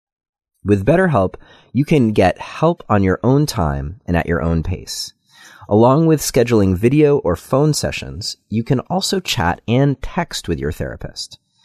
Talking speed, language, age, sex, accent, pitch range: 160 wpm, English, 30-49, male, American, 90-145 Hz